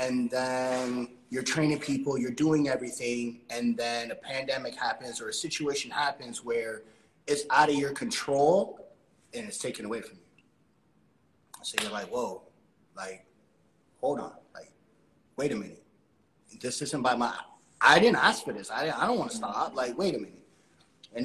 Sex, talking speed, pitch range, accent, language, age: male, 170 wpm, 125-155 Hz, American, English, 30-49